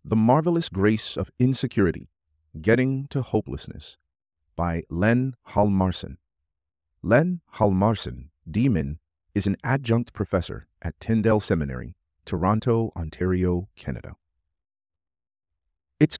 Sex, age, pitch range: male, 40-59, 80-115 Hz